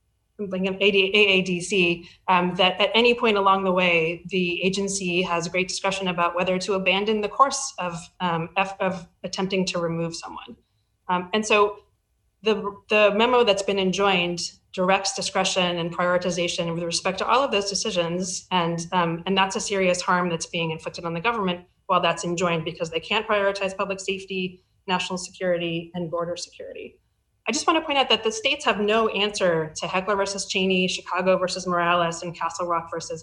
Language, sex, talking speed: English, female, 180 wpm